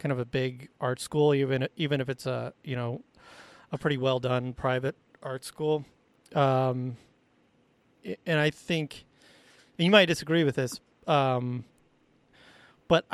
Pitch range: 130-155 Hz